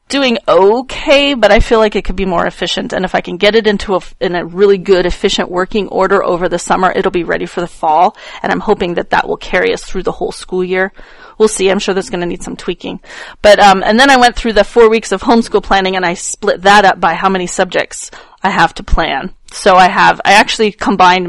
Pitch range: 175-210 Hz